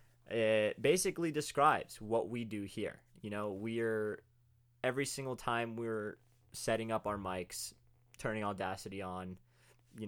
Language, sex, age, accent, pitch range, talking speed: English, male, 20-39, American, 100-120 Hz, 130 wpm